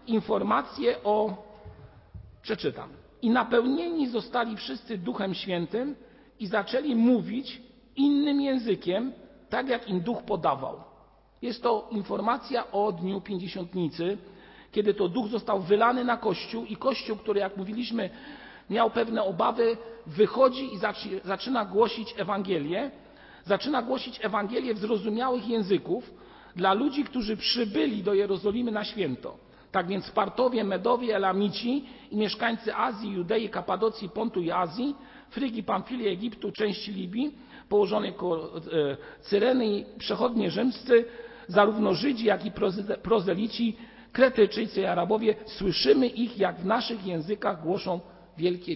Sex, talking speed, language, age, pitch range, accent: male, 125 wpm, Polish, 50-69, 195-240 Hz, native